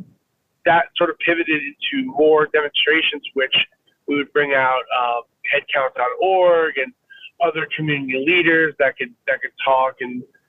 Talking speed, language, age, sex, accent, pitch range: 135 wpm, English, 30-49, male, American, 135-180 Hz